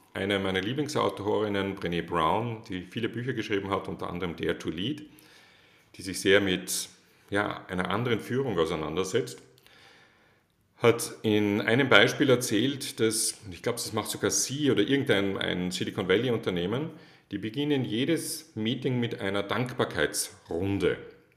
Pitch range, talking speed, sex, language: 100-145 Hz, 130 wpm, male, German